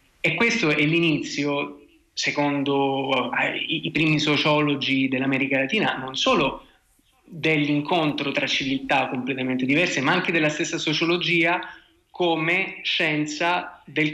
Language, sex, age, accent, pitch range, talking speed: Italian, male, 20-39, native, 135-165 Hz, 110 wpm